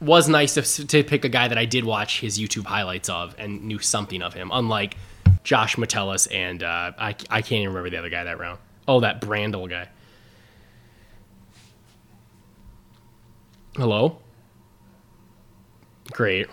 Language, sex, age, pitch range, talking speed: English, male, 20-39, 105-135 Hz, 150 wpm